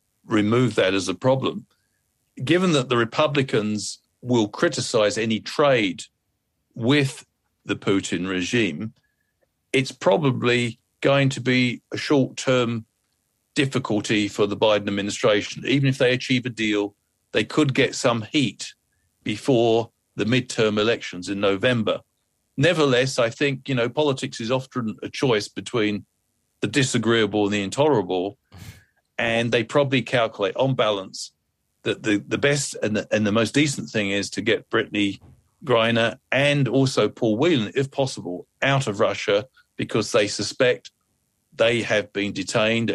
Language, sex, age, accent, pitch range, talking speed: English, male, 40-59, British, 105-130 Hz, 140 wpm